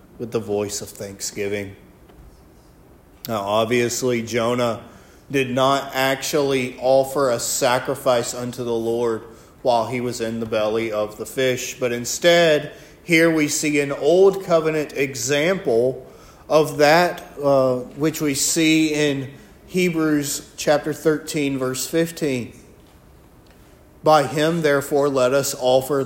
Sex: male